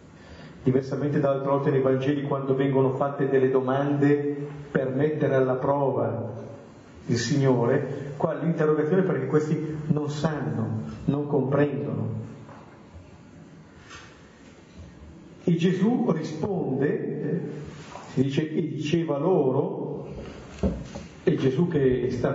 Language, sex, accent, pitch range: Italian, male, native, 130-165 Hz